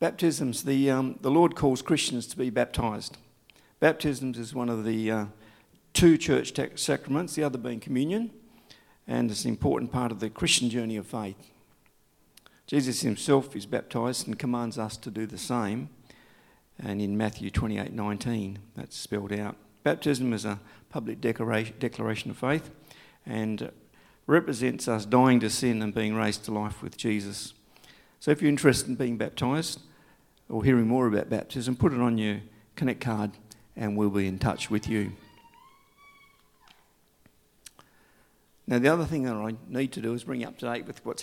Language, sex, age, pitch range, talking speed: English, male, 50-69, 110-135 Hz, 170 wpm